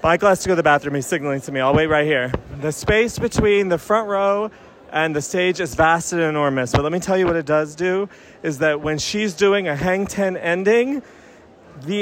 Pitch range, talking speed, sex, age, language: 150-190 Hz, 235 wpm, male, 30-49, English